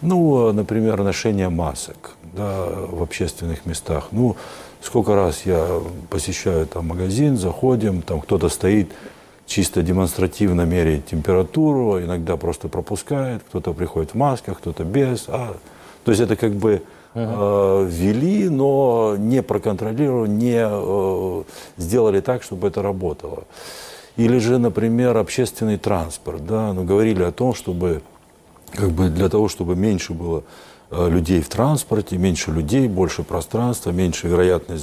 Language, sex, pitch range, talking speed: Ukrainian, male, 85-115 Hz, 135 wpm